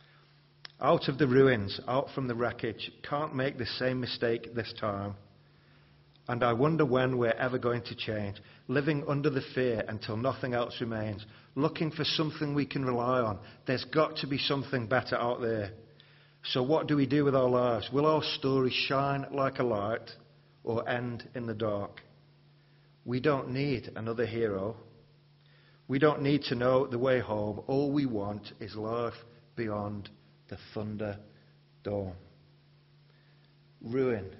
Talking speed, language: 155 wpm, English